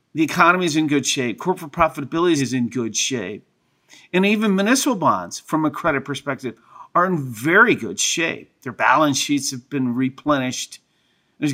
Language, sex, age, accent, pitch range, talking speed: English, male, 50-69, American, 130-175 Hz, 165 wpm